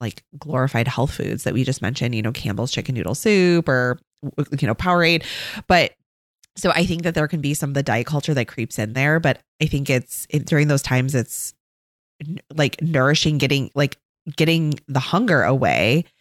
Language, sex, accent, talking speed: English, female, American, 190 wpm